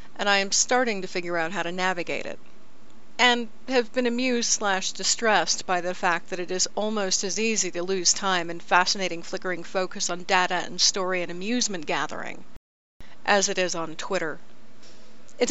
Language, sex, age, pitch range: English, female, 40-59, 175-205 Hz